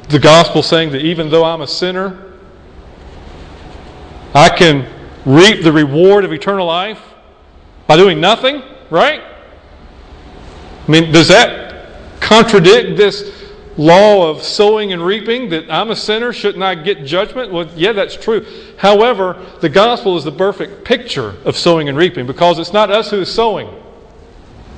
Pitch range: 150-210 Hz